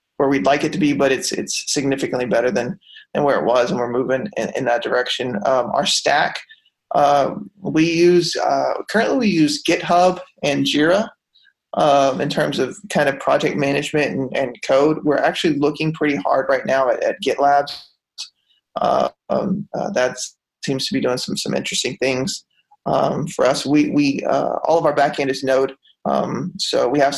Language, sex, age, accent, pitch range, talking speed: English, male, 20-39, American, 140-175 Hz, 190 wpm